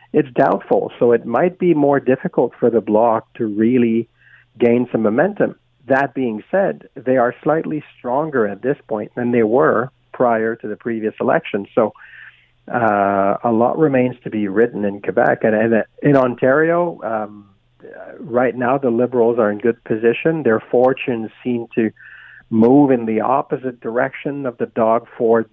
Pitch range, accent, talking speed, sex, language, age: 105-125 Hz, American, 165 wpm, male, English, 50-69